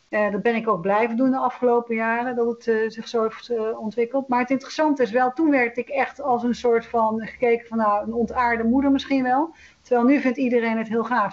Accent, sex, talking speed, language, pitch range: Dutch, female, 245 wpm, Dutch, 225-260 Hz